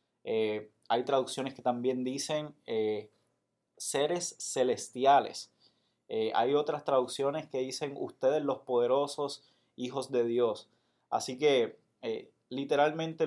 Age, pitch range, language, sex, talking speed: 20-39, 125-155 Hz, Spanish, male, 115 wpm